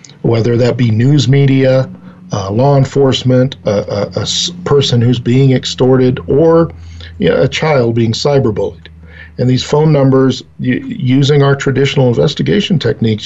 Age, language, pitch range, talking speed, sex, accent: 50-69, English, 115-145 Hz, 145 wpm, male, American